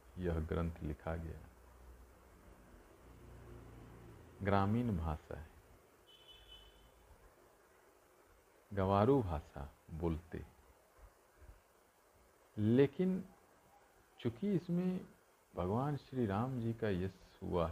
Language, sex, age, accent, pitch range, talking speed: Hindi, male, 50-69, native, 85-120 Hz, 70 wpm